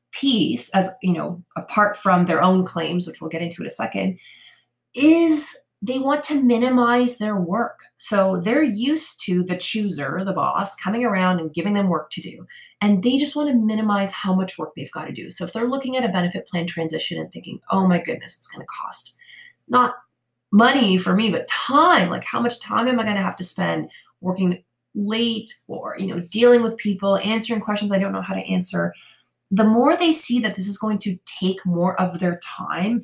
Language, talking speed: English, 215 wpm